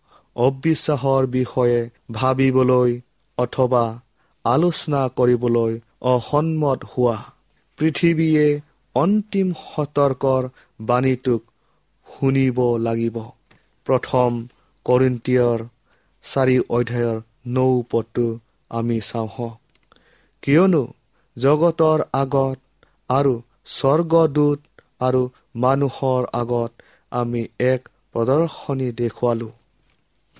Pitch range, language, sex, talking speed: 120-145 Hz, English, male, 75 wpm